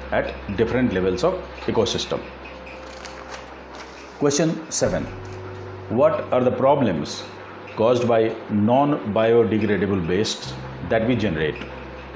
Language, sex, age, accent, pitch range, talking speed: Hindi, male, 50-69, native, 95-125 Hz, 95 wpm